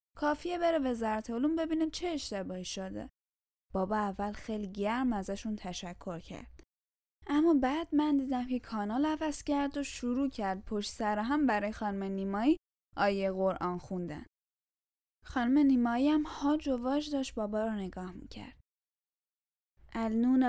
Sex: female